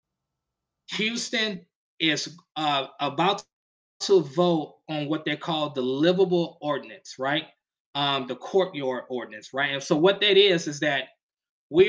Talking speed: 135 wpm